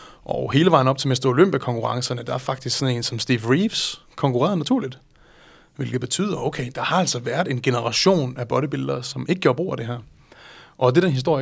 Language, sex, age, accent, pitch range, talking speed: Danish, male, 30-49, native, 120-135 Hz, 205 wpm